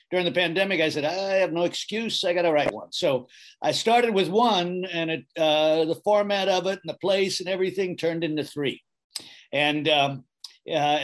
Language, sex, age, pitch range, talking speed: English, male, 50-69, 145-170 Hz, 190 wpm